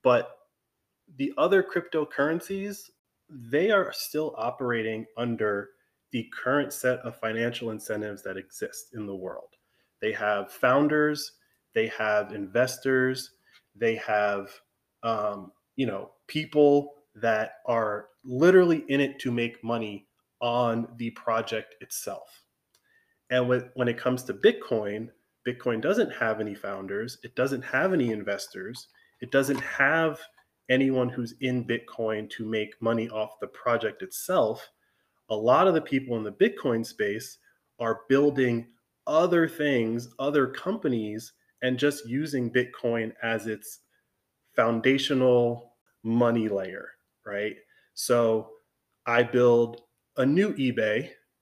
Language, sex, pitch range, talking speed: English, male, 110-135 Hz, 125 wpm